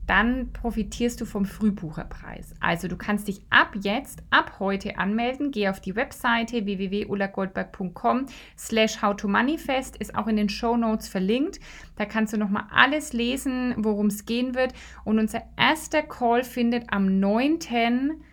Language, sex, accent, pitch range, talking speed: German, female, German, 205-240 Hz, 145 wpm